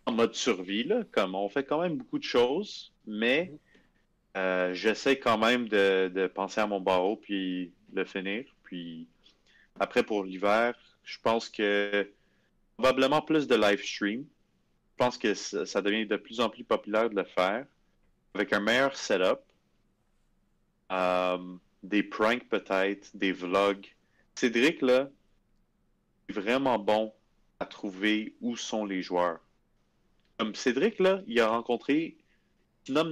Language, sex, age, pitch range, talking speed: French, male, 30-49, 100-130 Hz, 145 wpm